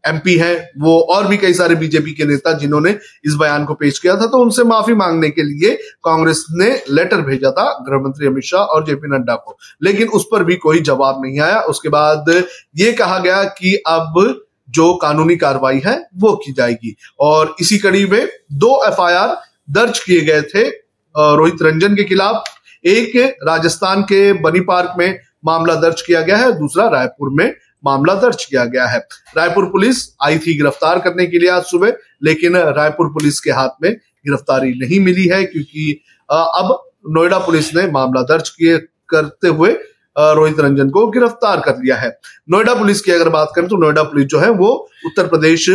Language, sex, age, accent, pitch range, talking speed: Hindi, male, 30-49, native, 150-200 Hz, 185 wpm